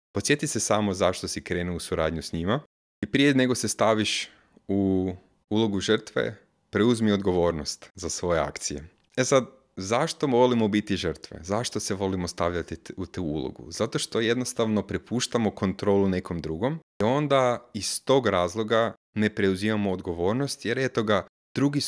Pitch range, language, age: 95-115 Hz, Croatian, 30-49